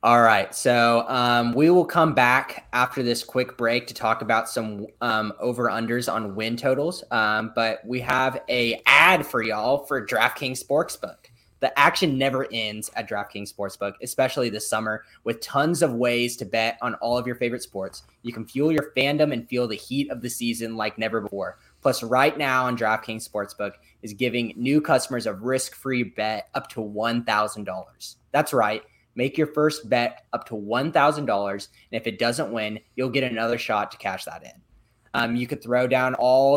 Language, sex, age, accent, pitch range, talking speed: English, male, 20-39, American, 110-130 Hz, 185 wpm